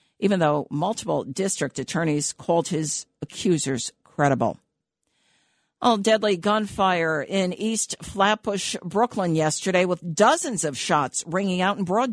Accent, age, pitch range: American, 50-69, 150-200 Hz